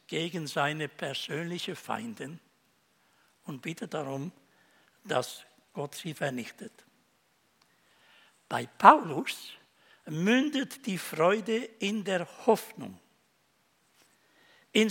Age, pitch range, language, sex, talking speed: 60-79, 170-240 Hz, German, male, 80 wpm